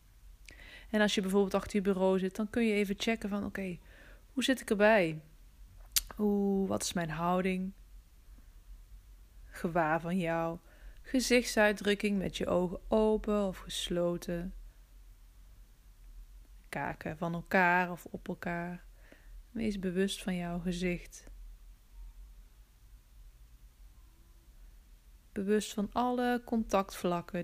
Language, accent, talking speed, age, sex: Dutch, Dutch, 110 wpm, 20-39, female